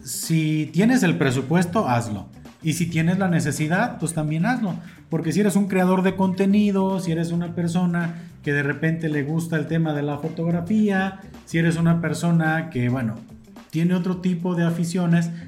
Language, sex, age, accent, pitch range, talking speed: Spanish, male, 40-59, Mexican, 140-185 Hz, 175 wpm